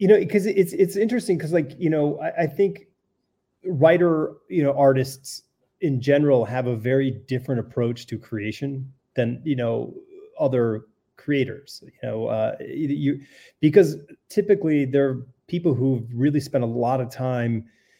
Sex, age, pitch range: male, 30-49, 115-145 Hz